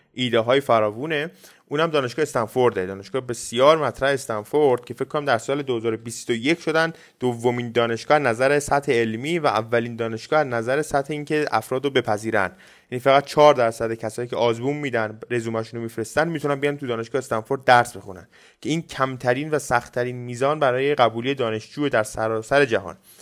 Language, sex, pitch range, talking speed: Persian, male, 115-145 Hz, 160 wpm